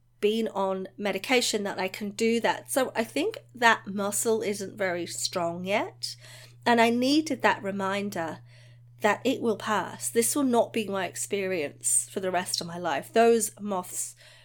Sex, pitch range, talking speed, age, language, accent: female, 160-220 Hz, 165 wpm, 30-49, English, British